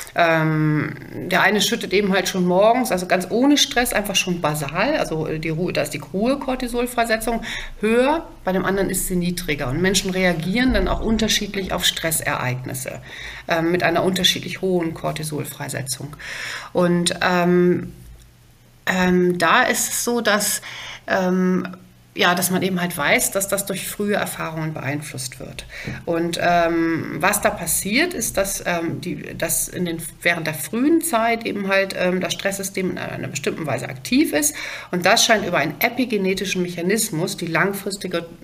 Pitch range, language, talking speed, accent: 165-205 Hz, German, 155 wpm, German